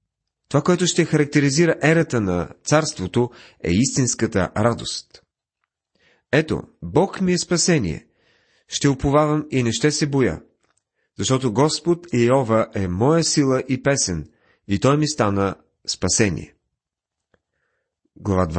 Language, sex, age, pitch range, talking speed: Bulgarian, male, 40-59, 105-150 Hz, 115 wpm